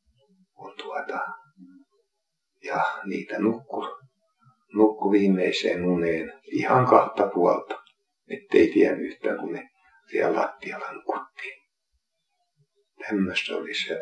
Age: 60-79